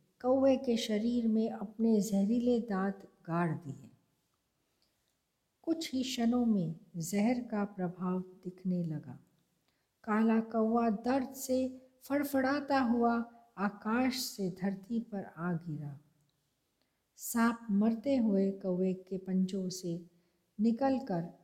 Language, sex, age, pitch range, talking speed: Hindi, female, 50-69, 185-235 Hz, 105 wpm